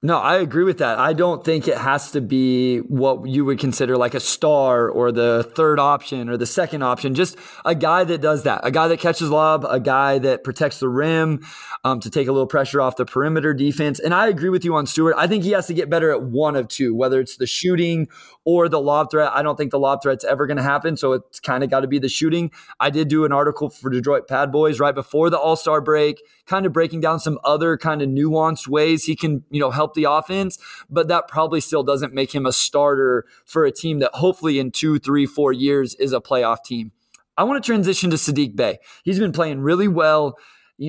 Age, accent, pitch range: 20-39, American, 135-160 Hz